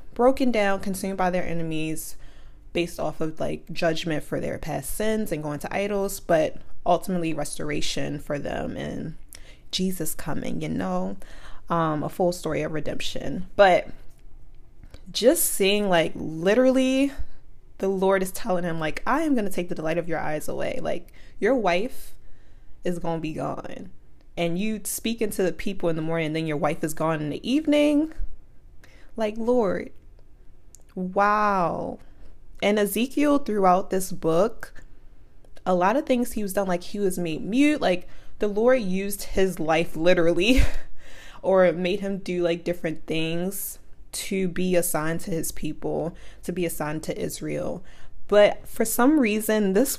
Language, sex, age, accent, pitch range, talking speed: English, female, 20-39, American, 165-210 Hz, 160 wpm